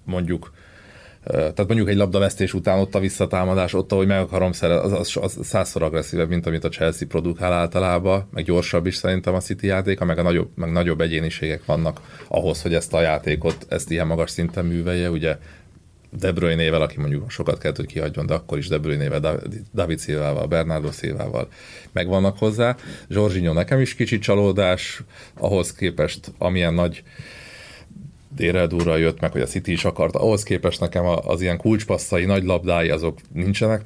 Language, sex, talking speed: Hungarian, male, 165 wpm